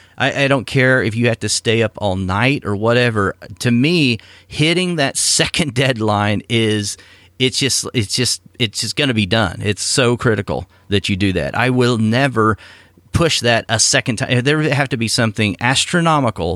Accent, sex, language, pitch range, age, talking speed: American, male, English, 95-120 Hz, 40-59, 190 wpm